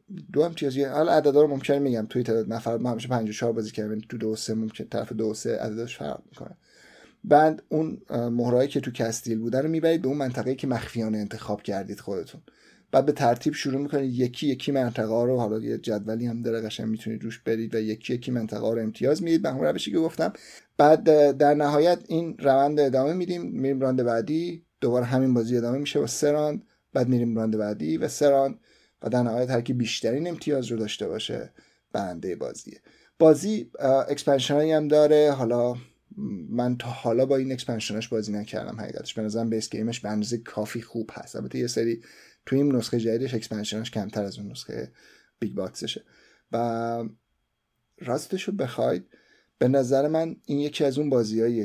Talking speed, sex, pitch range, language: 175 wpm, male, 115-145 Hz, Persian